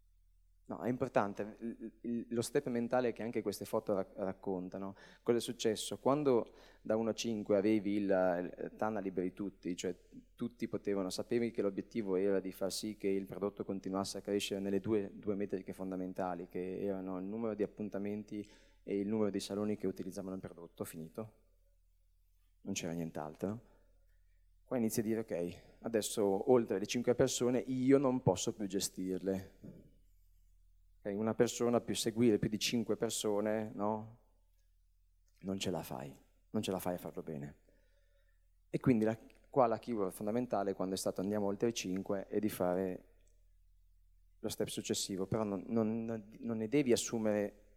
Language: Italian